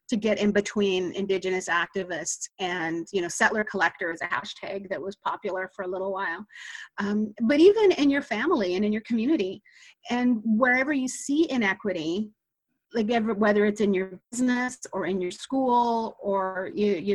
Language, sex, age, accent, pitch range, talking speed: English, female, 30-49, American, 195-240 Hz, 170 wpm